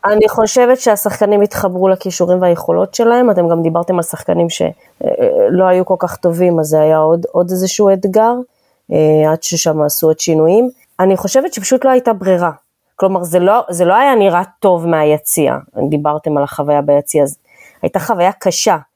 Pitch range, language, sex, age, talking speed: 175-225 Hz, Hebrew, female, 20-39, 165 wpm